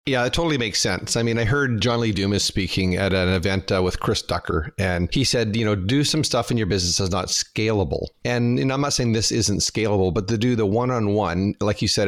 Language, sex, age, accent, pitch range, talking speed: English, male, 40-59, American, 95-110 Hz, 250 wpm